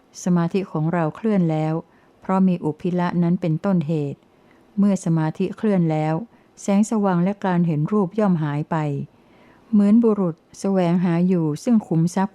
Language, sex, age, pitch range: Thai, female, 60-79, 160-195 Hz